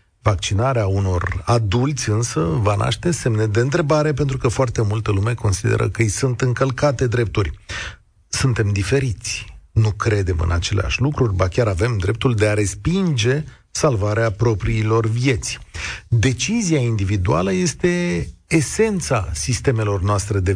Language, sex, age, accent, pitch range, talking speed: Romanian, male, 40-59, native, 100-140 Hz, 130 wpm